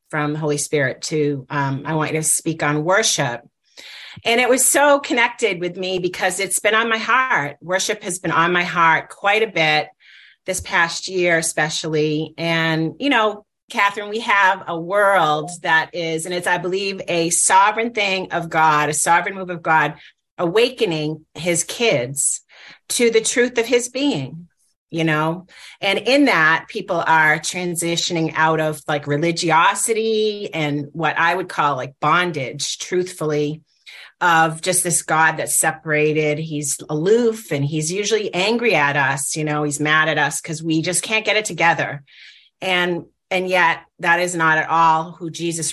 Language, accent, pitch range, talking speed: English, American, 150-185 Hz, 170 wpm